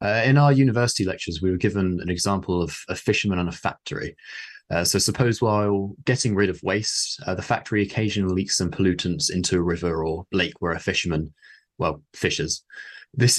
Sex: male